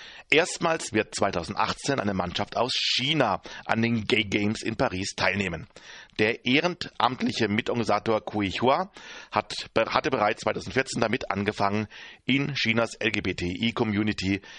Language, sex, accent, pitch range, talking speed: German, male, German, 100-130 Hz, 115 wpm